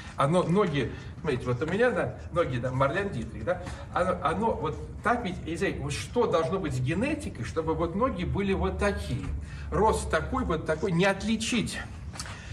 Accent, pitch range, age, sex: native, 135-200 Hz, 40-59, male